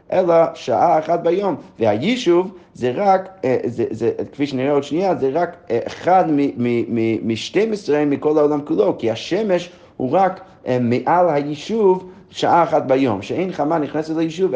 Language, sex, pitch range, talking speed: Hebrew, male, 125-165 Hz, 155 wpm